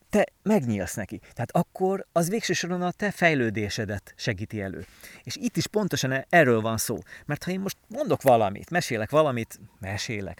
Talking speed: 165 wpm